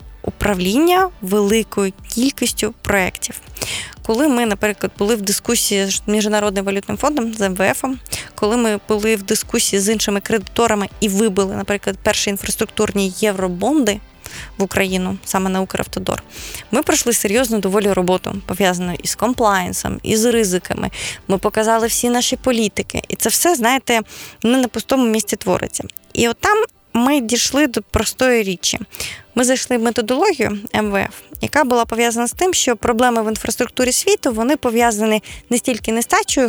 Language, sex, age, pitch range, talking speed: Ukrainian, female, 20-39, 205-245 Hz, 145 wpm